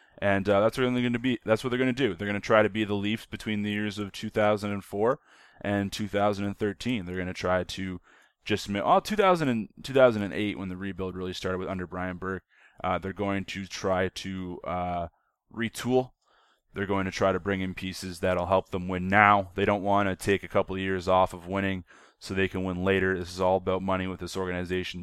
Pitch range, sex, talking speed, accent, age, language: 90-105 Hz, male, 230 wpm, American, 20-39, English